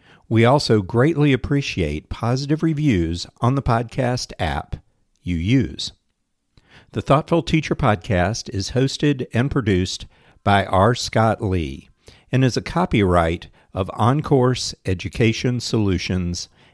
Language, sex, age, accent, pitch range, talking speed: English, male, 50-69, American, 95-135 Hz, 115 wpm